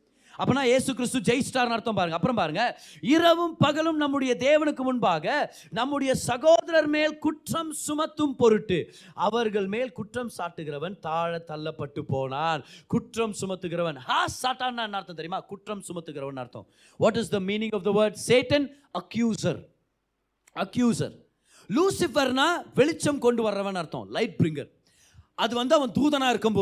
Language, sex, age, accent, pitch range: Tamil, male, 30-49, native, 165-255 Hz